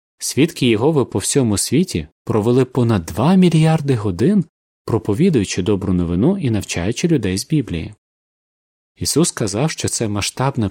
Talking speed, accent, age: 130 wpm, native, 30-49